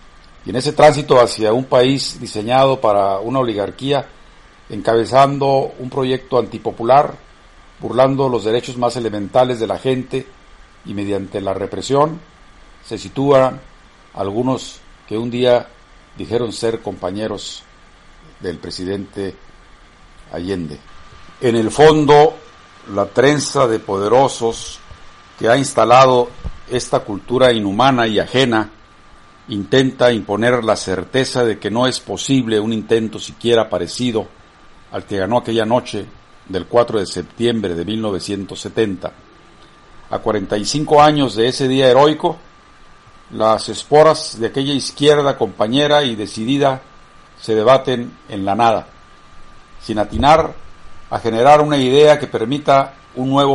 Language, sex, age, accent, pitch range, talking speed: Spanish, male, 50-69, Mexican, 100-130 Hz, 120 wpm